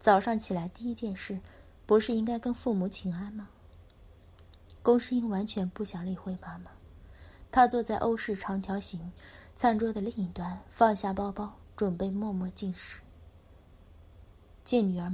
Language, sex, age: Chinese, female, 20-39